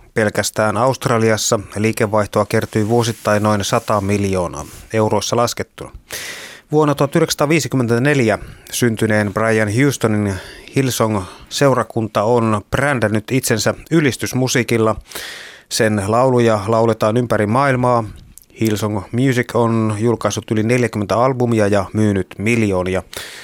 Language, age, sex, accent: Finnish, 30-49, male, native